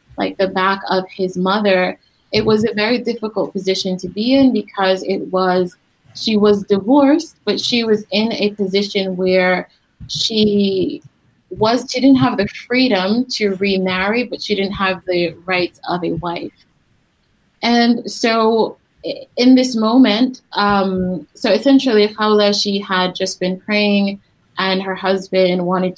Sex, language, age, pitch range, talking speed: female, English, 20-39, 185-215 Hz, 150 wpm